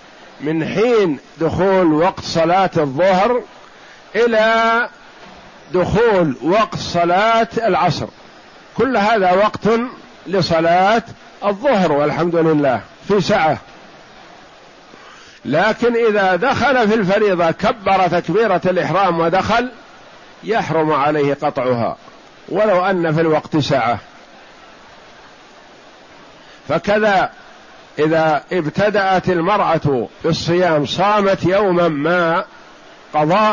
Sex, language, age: male, Arabic, 50-69